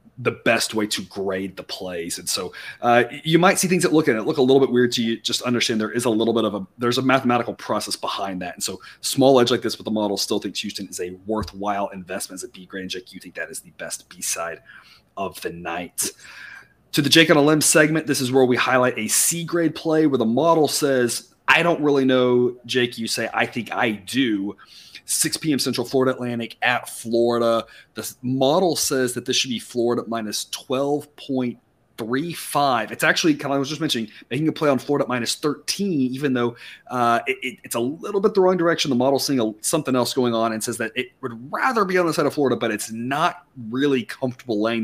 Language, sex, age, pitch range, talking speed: English, male, 30-49, 115-140 Hz, 230 wpm